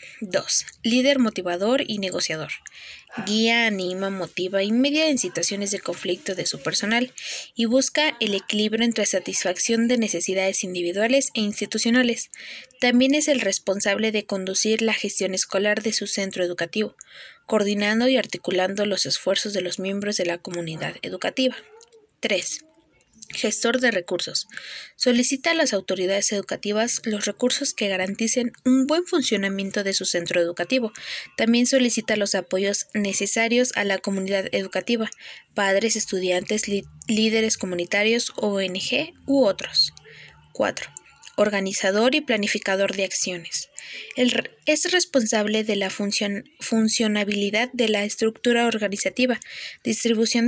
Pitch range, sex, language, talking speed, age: 195-245 Hz, female, Spanish, 125 wpm, 20-39